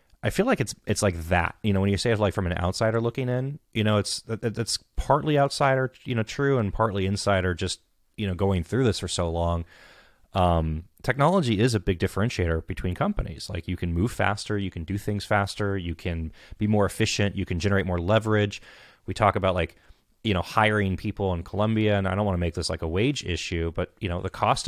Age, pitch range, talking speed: 30-49, 90-115 Hz, 230 wpm